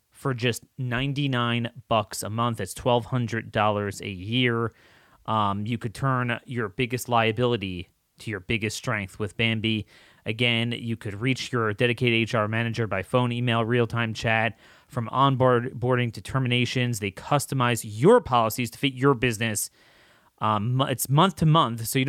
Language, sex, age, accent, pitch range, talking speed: English, male, 30-49, American, 115-140 Hz, 145 wpm